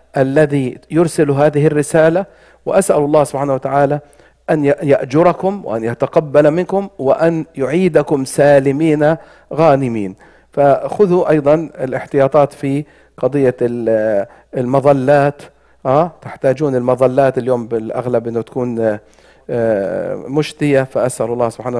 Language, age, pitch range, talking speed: English, 50-69, 115-145 Hz, 90 wpm